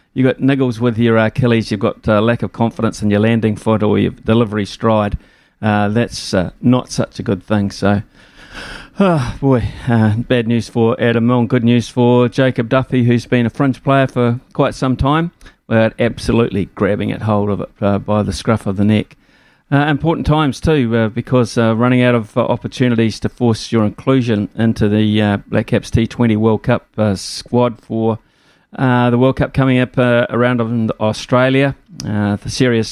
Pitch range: 105-125 Hz